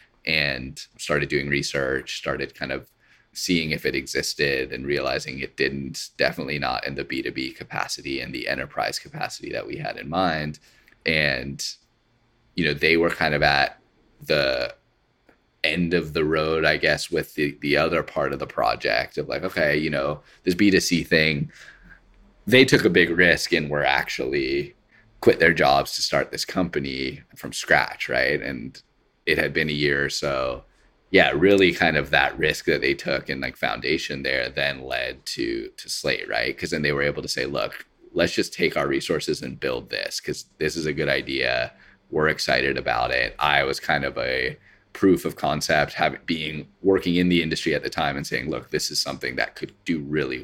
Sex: male